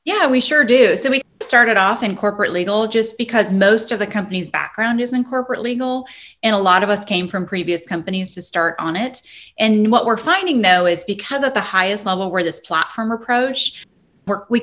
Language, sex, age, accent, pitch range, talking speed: English, female, 30-49, American, 180-230 Hz, 210 wpm